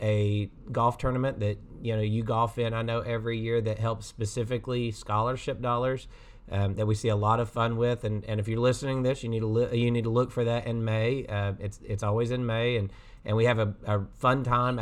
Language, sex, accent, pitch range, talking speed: English, male, American, 110-125 Hz, 245 wpm